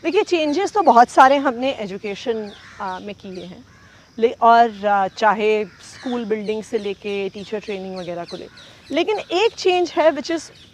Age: 30-49